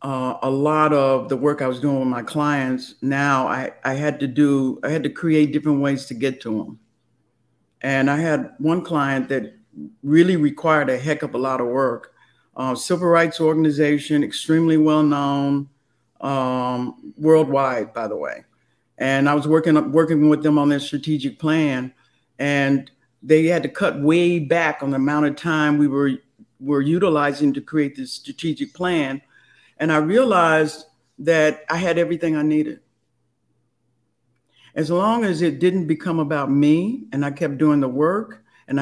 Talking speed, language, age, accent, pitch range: 170 wpm, English, 50-69, American, 135-165 Hz